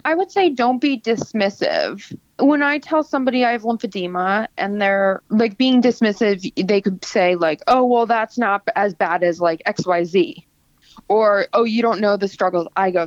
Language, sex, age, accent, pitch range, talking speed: English, female, 20-39, American, 180-225 Hz, 195 wpm